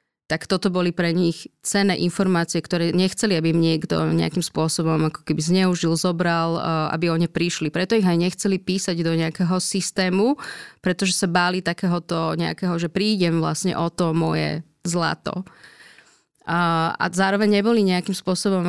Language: Slovak